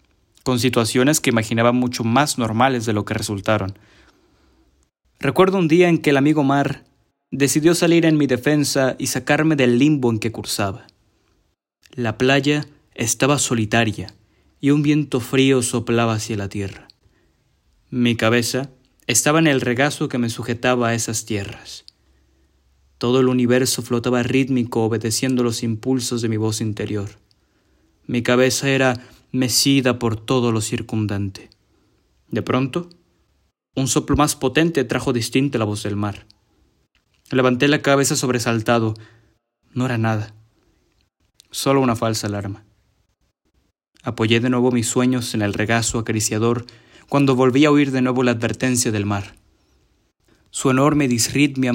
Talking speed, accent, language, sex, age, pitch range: 140 wpm, Mexican, Spanish, male, 20-39, 110-130 Hz